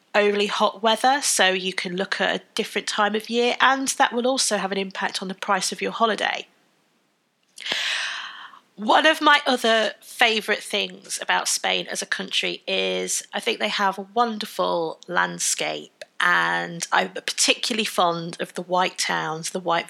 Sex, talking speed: female, 165 wpm